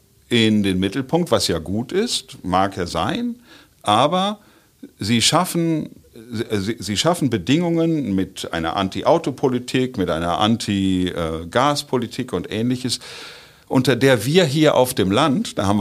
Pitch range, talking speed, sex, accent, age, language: 100-135 Hz, 125 wpm, male, German, 50-69, German